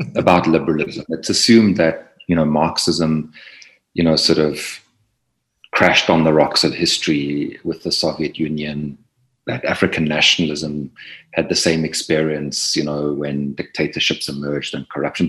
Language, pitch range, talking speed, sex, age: English, 75-85 Hz, 140 wpm, male, 40-59